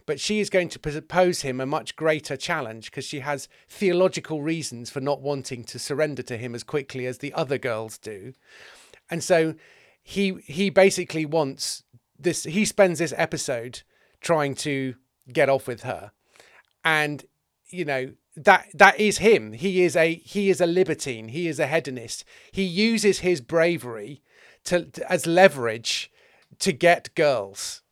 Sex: male